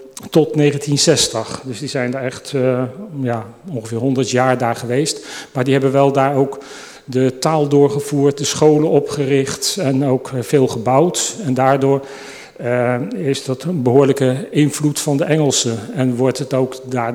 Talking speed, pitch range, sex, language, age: 160 wpm, 125-145 Hz, male, Dutch, 40-59